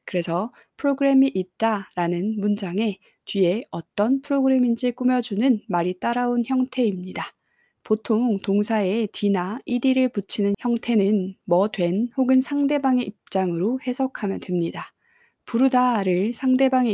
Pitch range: 190-245 Hz